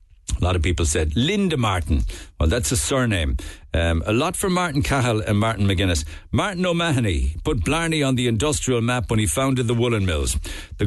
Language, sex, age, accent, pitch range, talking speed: English, male, 60-79, Irish, 85-135 Hz, 195 wpm